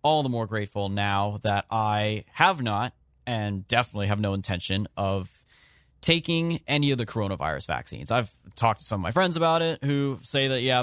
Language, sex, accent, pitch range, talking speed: English, male, American, 100-130 Hz, 190 wpm